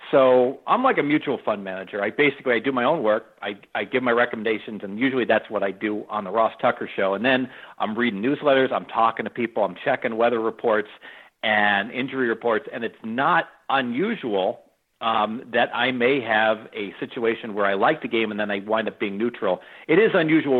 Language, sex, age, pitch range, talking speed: English, male, 50-69, 110-135 Hz, 210 wpm